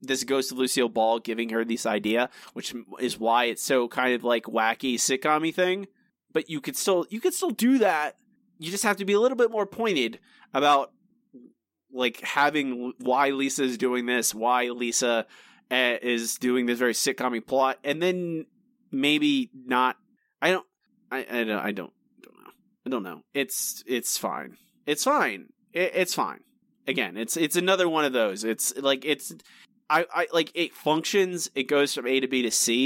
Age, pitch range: 20-39, 115-160 Hz